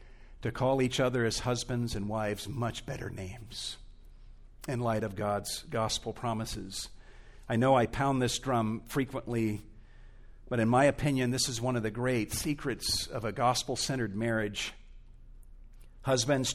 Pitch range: 110-135 Hz